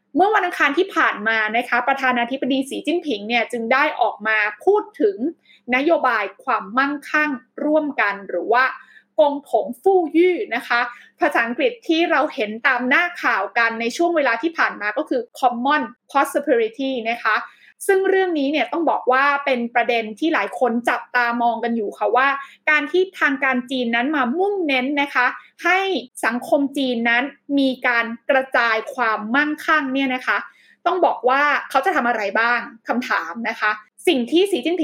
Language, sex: Thai, female